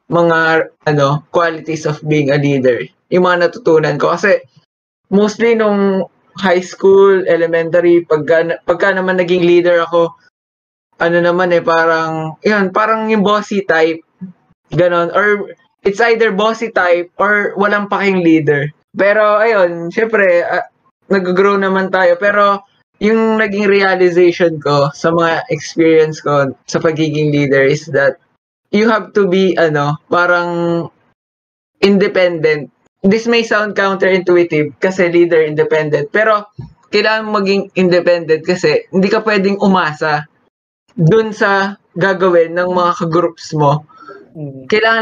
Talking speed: 125 wpm